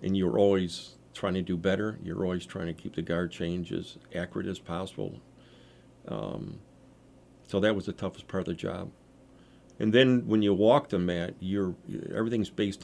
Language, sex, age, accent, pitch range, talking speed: English, male, 50-69, American, 90-110 Hz, 180 wpm